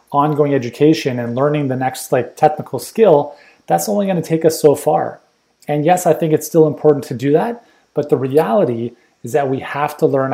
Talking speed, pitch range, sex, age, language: 210 wpm, 125-155 Hz, male, 30-49, English